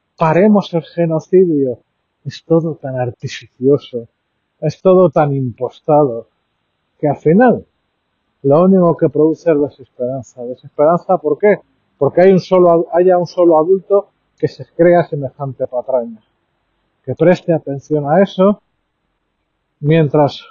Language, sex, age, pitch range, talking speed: Spanish, male, 40-59, 135-165 Hz, 125 wpm